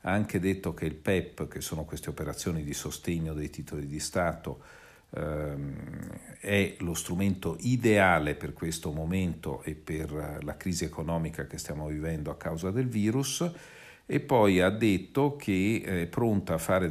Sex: male